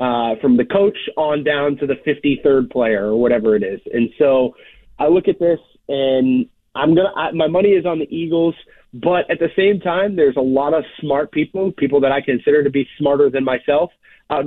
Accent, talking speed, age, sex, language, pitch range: American, 210 wpm, 30-49, male, English, 135-170 Hz